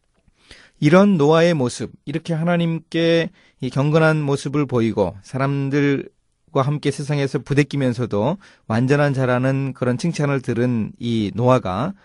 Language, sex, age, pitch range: Korean, male, 30-49, 115-165 Hz